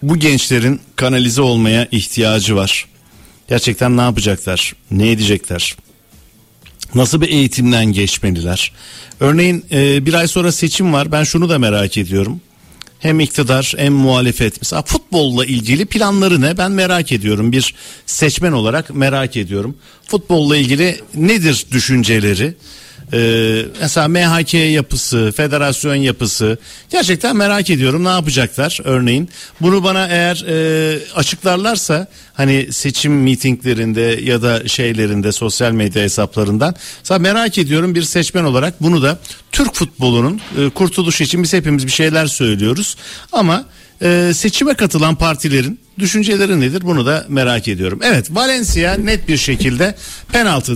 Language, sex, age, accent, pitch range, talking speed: Turkish, male, 60-79, native, 120-170 Hz, 125 wpm